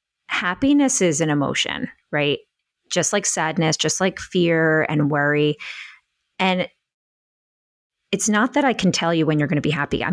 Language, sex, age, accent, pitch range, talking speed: English, female, 30-49, American, 155-200 Hz, 165 wpm